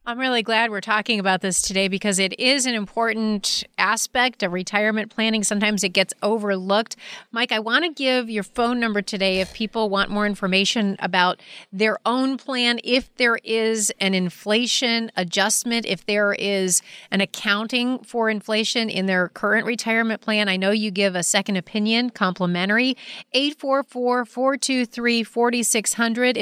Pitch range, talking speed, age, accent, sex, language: 195-235 Hz, 150 wpm, 30-49, American, female, English